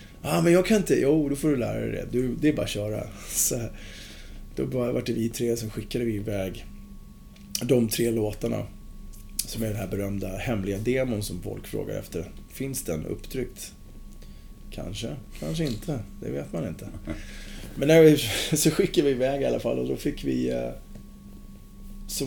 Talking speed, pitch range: 180 wpm, 100-135 Hz